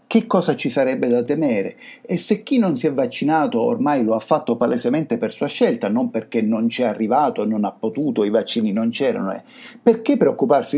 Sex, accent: male, native